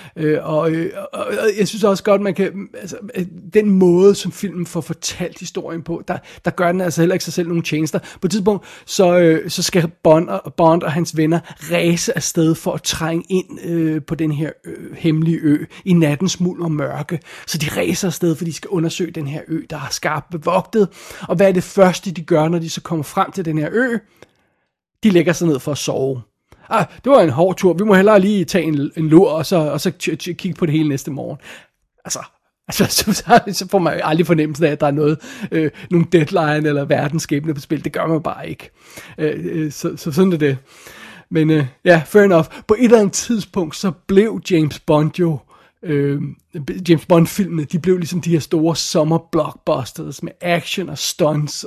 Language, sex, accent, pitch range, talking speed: Danish, male, native, 155-190 Hz, 215 wpm